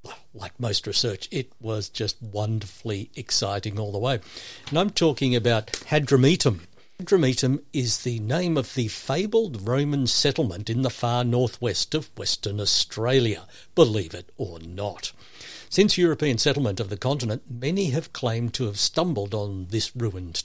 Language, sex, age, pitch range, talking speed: English, male, 60-79, 105-140 Hz, 155 wpm